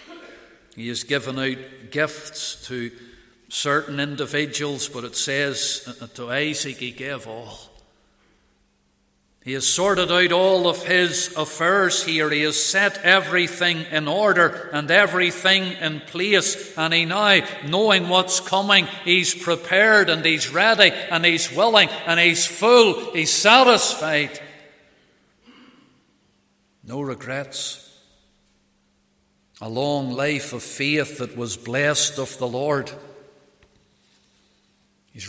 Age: 50-69